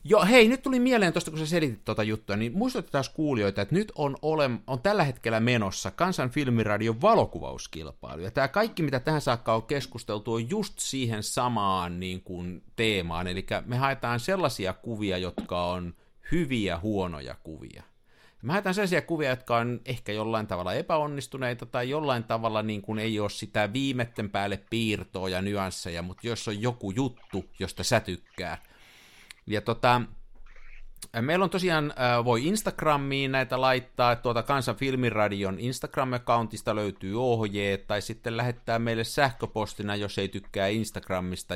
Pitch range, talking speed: 105-135 Hz, 150 wpm